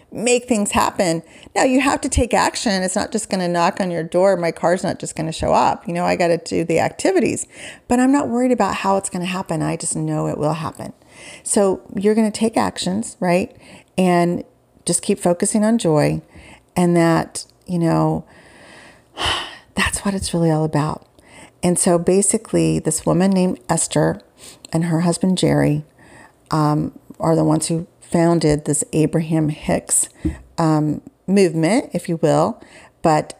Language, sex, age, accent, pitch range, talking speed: English, female, 40-59, American, 155-195 Hz, 180 wpm